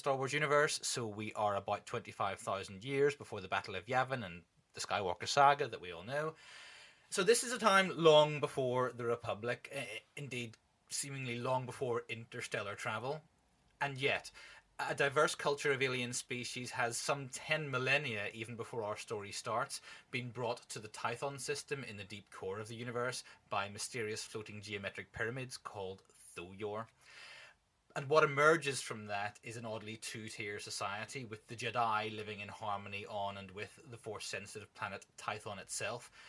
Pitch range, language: 105-140 Hz, English